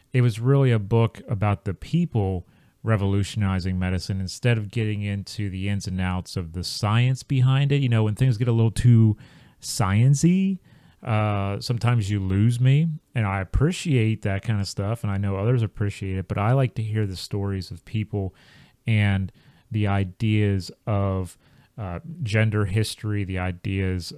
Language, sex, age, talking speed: English, male, 30-49, 170 wpm